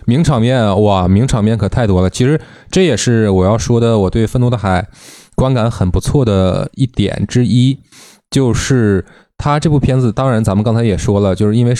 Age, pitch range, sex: 20-39, 95-130 Hz, male